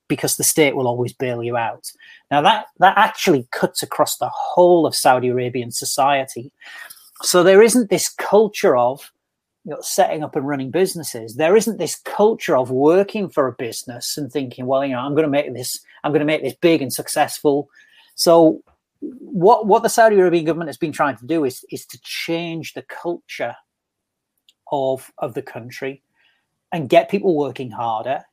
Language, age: English, 40-59